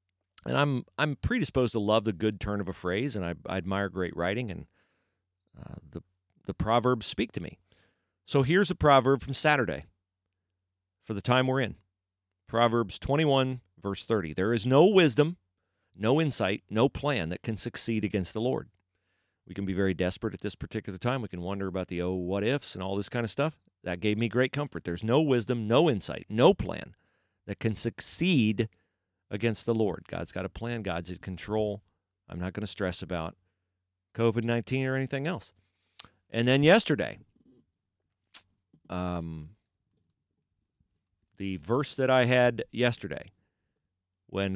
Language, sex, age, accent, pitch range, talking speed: English, male, 40-59, American, 90-125 Hz, 165 wpm